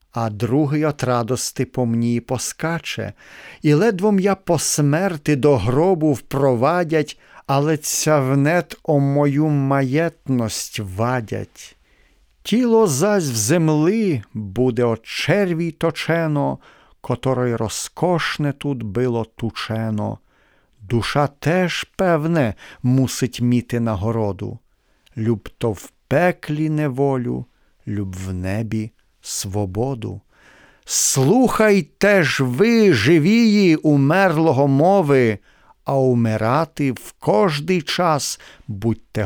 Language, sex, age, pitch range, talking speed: Ukrainian, male, 50-69, 115-170 Hz, 95 wpm